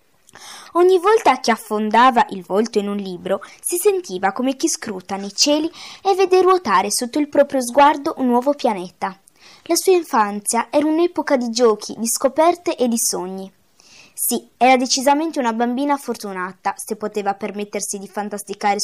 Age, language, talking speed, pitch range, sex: 20-39, Italian, 155 wpm, 200-285 Hz, female